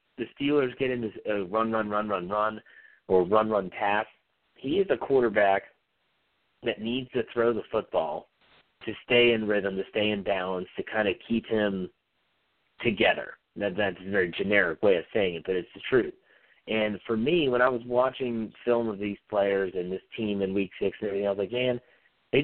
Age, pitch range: 40-59, 105-125 Hz